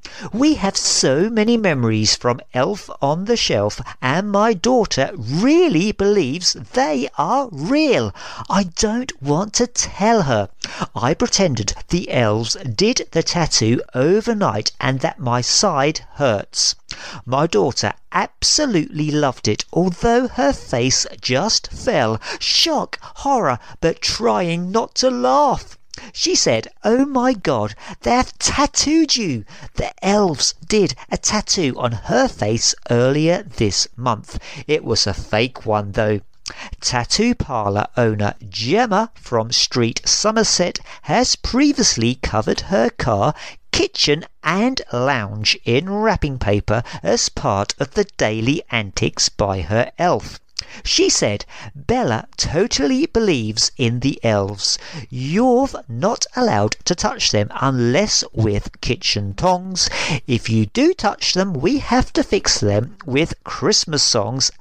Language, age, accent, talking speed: English, 50-69, British, 125 wpm